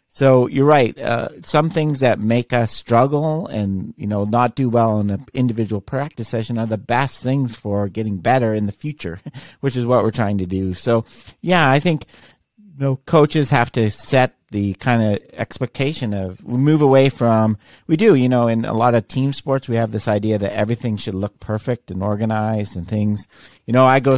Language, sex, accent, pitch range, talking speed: English, male, American, 105-135 Hz, 210 wpm